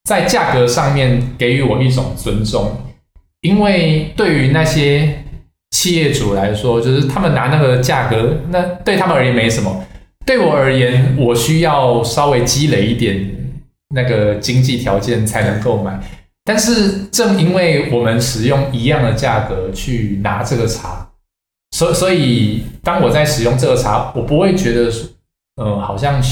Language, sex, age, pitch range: Vietnamese, male, 20-39, 105-140 Hz